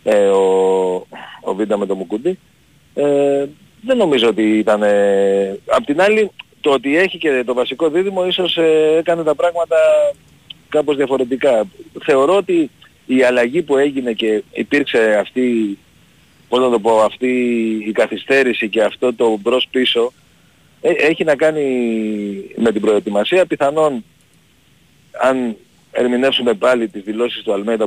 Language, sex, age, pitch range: Greek, male, 40-59, 110-160 Hz